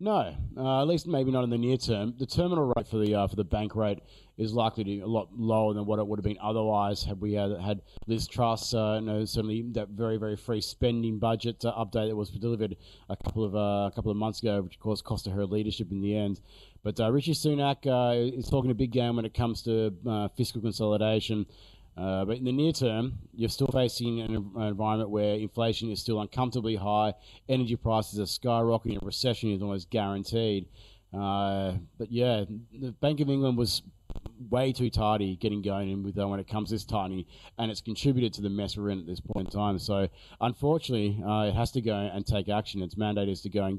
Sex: male